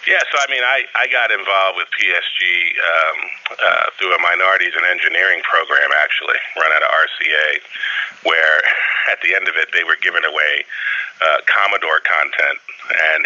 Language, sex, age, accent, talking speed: English, male, 30-49, American, 170 wpm